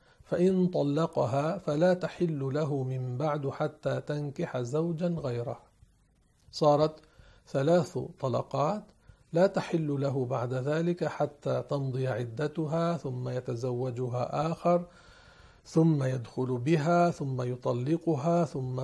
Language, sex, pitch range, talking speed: Arabic, male, 130-160 Hz, 100 wpm